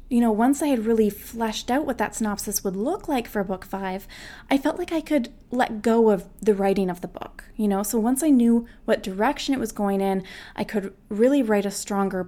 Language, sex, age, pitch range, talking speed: English, female, 20-39, 195-245 Hz, 235 wpm